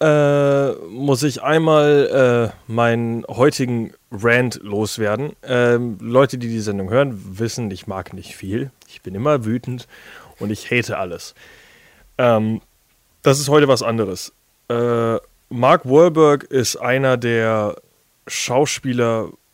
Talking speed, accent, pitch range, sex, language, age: 125 wpm, German, 110-130 Hz, male, German, 30-49